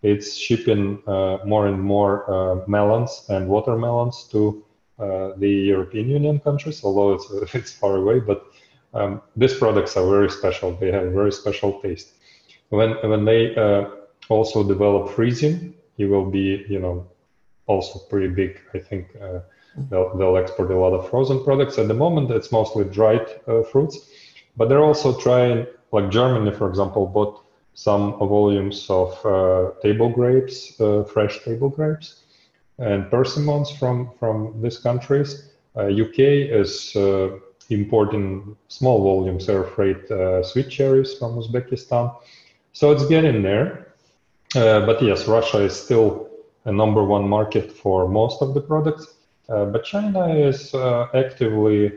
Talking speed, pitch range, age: 150 wpm, 100-130 Hz, 30-49